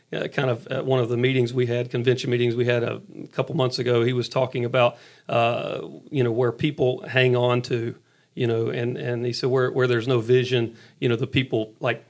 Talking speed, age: 235 wpm, 40-59